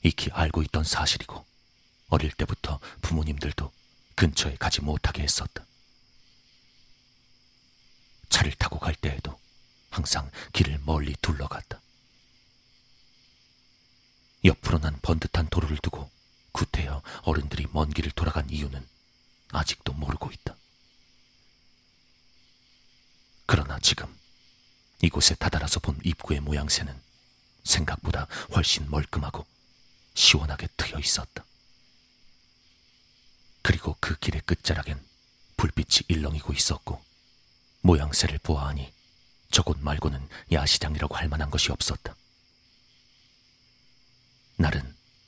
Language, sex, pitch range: Korean, male, 75-95 Hz